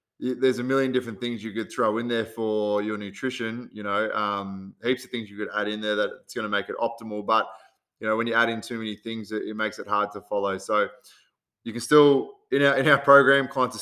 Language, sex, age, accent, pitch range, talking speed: English, male, 20-39, Australian, 110-125 Hz, 255 wpm